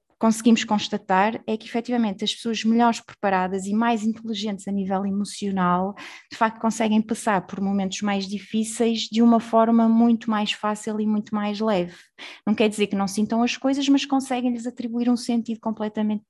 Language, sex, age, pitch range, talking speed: Portuguese, female, 20-39, 205-250 Hz, 175 wpm